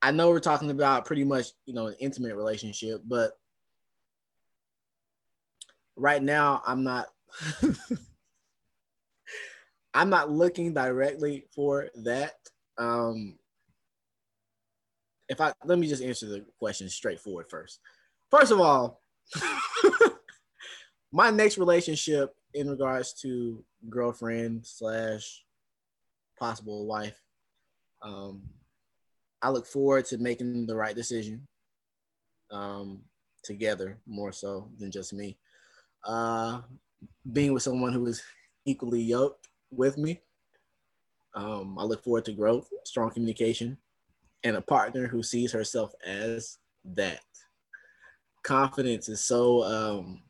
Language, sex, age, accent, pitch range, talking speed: English, male, 20-39, American, 110-135 Hz, 110 wpm